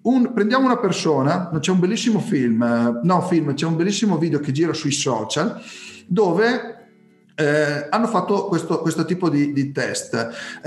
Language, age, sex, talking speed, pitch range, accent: Italian, 40-59, male, 165 wpm, 145-230 Hz, native